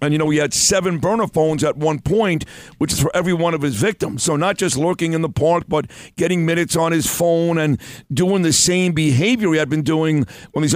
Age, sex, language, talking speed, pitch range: 50-69, male, English, 240 wpm, 155-185 Hz